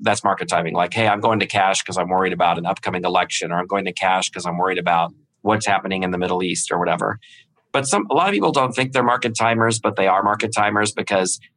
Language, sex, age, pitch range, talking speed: English, male, 40-59, 95-110 Hz, 260 wpm